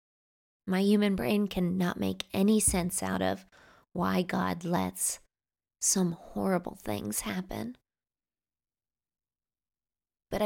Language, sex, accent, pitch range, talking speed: English, female, American, 175-205 Hz, 100 wpm